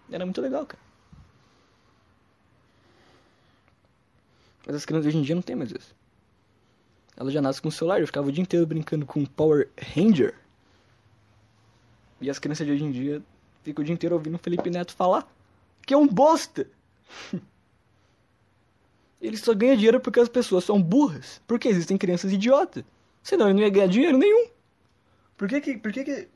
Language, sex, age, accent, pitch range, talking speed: Portuguese, male, 20-39, Brazilian, 125-195 Hz, 175 wpm